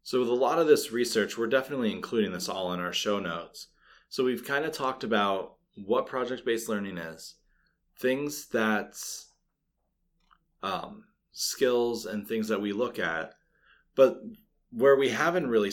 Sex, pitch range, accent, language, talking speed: male, 105-140 Hz, American, English, 155 wpm